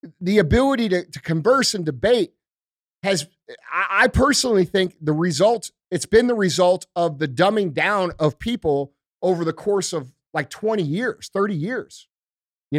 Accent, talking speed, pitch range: American, 155 wpm, 160-210 Hz